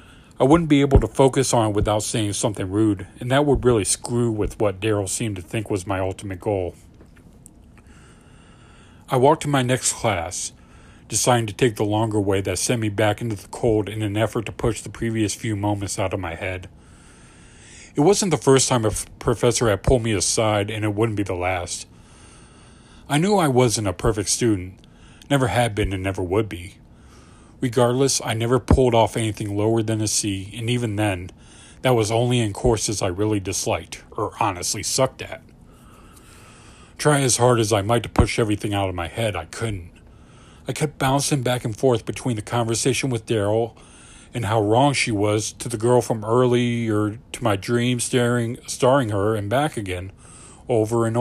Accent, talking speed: American, 190 wpm